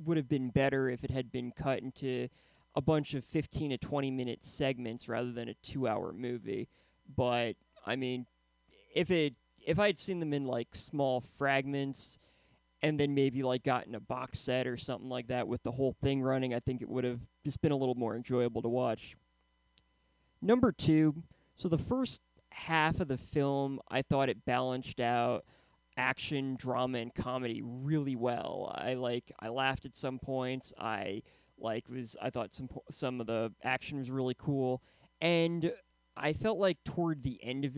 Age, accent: 20-39, American